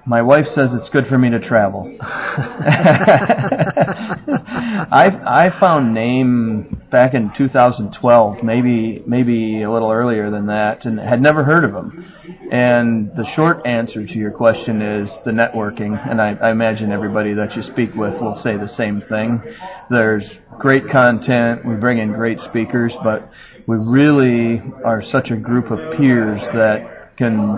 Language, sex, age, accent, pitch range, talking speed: English, male, 40-59, American, 110-130 Hz, 155 wpm